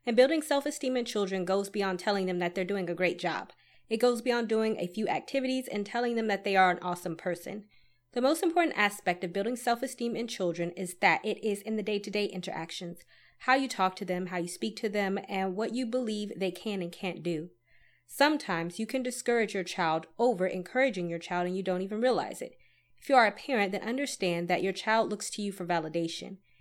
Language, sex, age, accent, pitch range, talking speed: English, female, 20-39, American, 180-235 Hz, 220 wpm